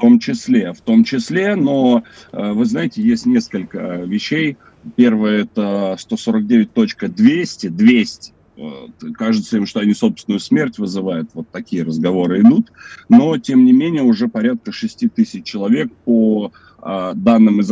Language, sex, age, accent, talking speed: Russian, male, 30-49, native, 130 wpm